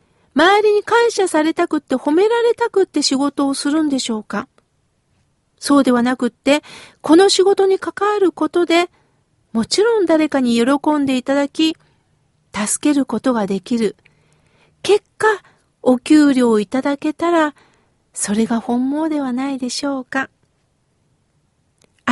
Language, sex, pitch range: Japanese, female, 250-320 Hz